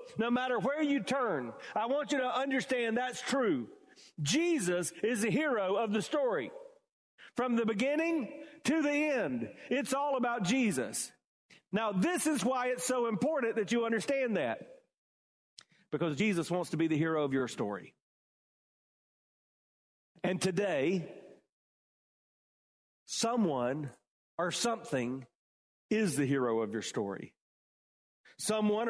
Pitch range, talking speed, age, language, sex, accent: 170-245 Hz, 130 wpm, 40-59, English, male, American